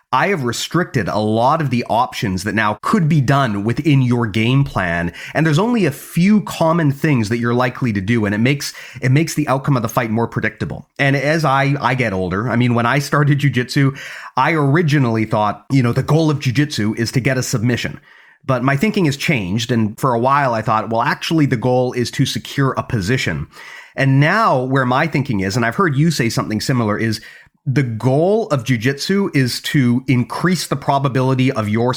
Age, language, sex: 30-49, English, male